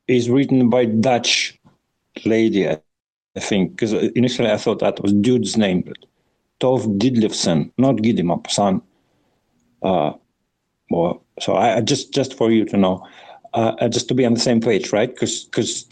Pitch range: 110-130 Hz